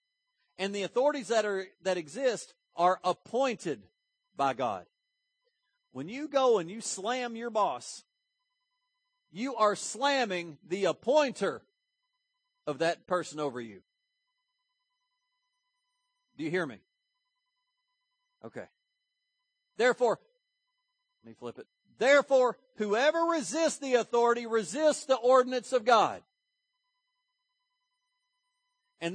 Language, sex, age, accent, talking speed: English, male, 50-69, American, 105 wpm